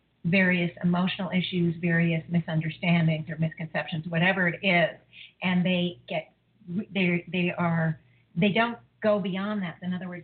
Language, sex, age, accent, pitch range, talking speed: English, female, 50-69, American, 170-205 Hz, 140 wpm